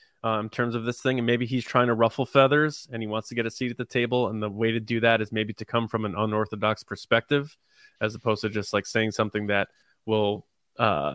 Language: English